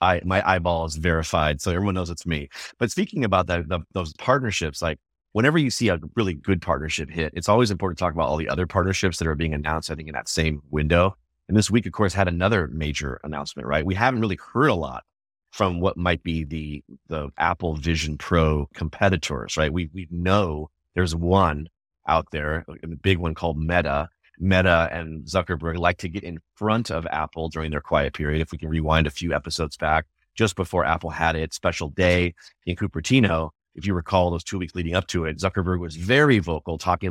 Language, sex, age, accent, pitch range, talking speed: English, male, 30-49, American, 80-95 Hz, 210 wpm